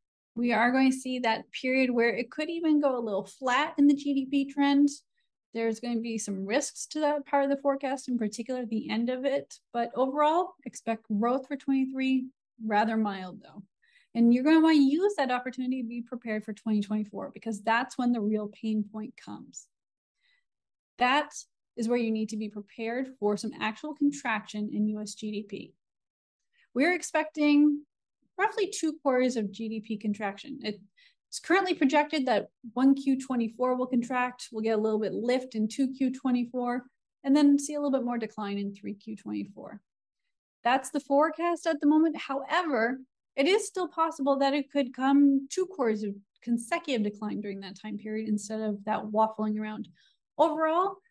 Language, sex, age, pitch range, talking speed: English, female, 30-49, 220-285 Hz, 170 wpm